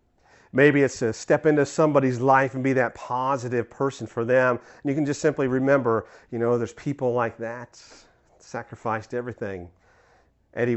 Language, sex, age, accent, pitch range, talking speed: English, male, 40-59, American, 100-125 Hz, 160 wpm